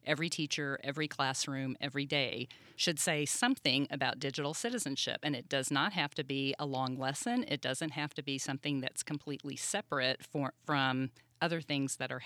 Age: 40-59